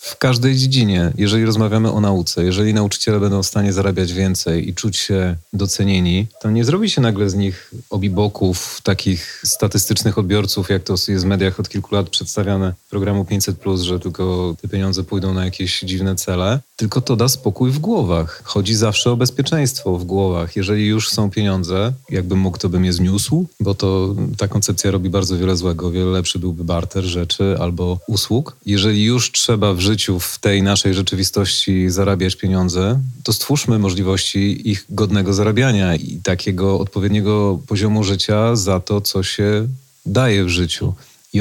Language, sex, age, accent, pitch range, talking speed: Polish, male, 30-49, native, 95-115 Hz, 165 wpm